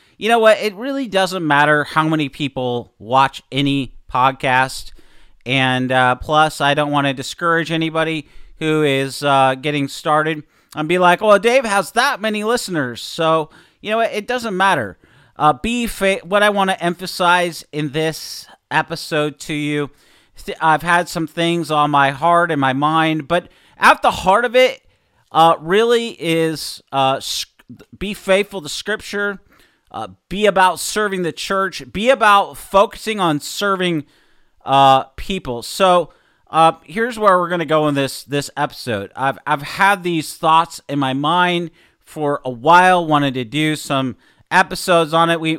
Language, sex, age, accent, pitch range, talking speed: English, male, 40-59, American, 145-190 Hz, 165 wpm